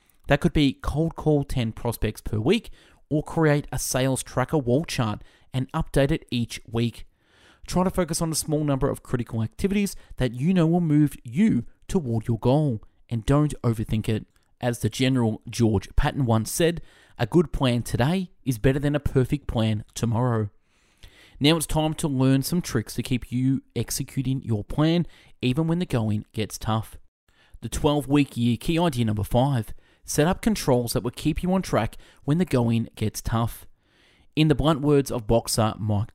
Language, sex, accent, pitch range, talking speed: English, male, Australian, 110-150 Hz, 180 wpm